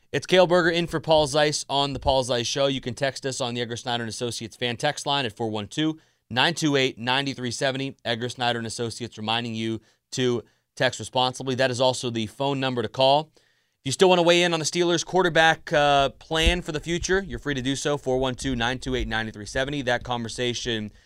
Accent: American